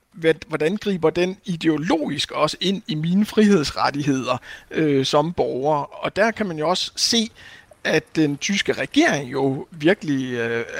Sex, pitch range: male, 140-195 Hz